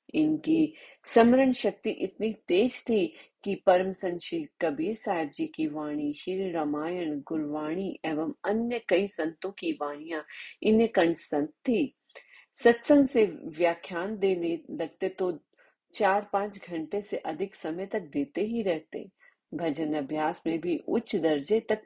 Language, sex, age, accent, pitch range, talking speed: Hindi, female, 40-59, native, 155-205 Hz, 135 wpm